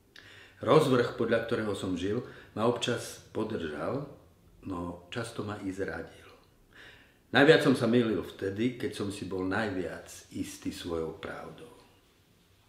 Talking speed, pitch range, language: 125 wpm, 95-115 Hz, Slovak